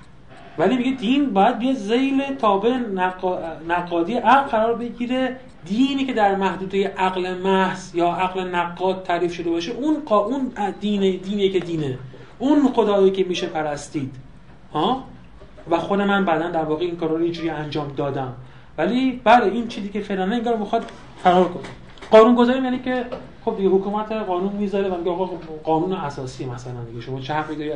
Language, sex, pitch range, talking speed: Persian, male, 170-230 Hz, 155 wpm